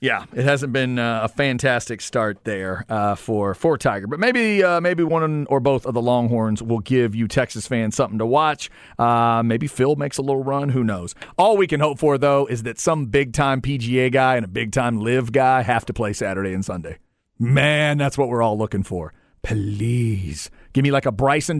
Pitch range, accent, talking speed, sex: 120-155 Hz, American, 210 wpm, male